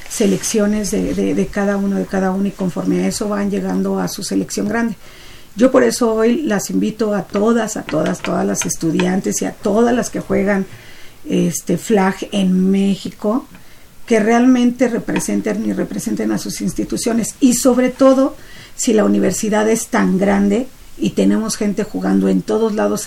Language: Spanish